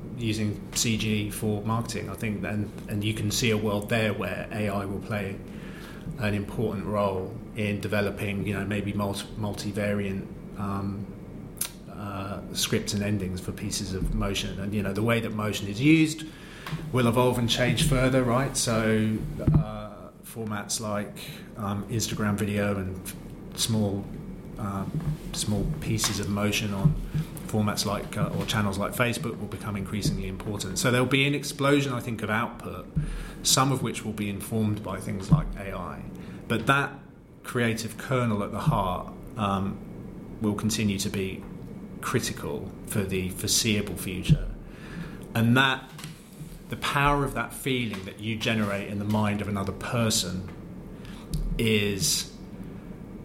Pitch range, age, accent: 100-120 Hz, 30-49, British